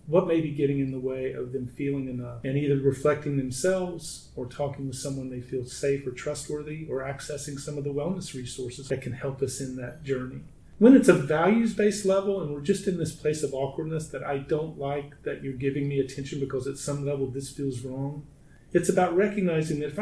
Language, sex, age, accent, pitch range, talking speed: English, male, 40-59, American, 135-165 Hz, 215 wpm